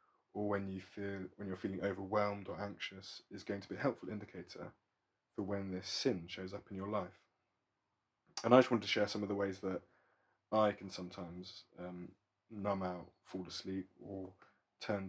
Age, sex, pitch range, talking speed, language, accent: 20-39, male, 90-105 Hz, 185 wpm, English, British